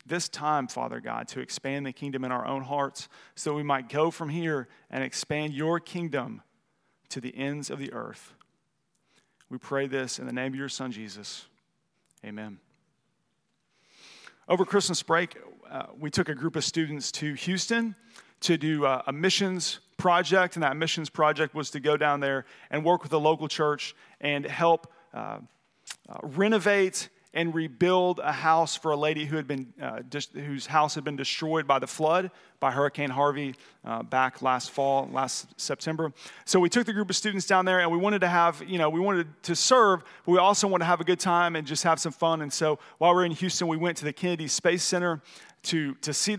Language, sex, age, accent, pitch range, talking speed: English, male, 40-59, American, 140-175 Hz, 205 wpm